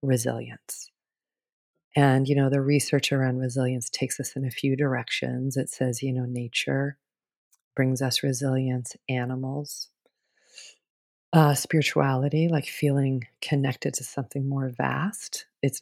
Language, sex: English, female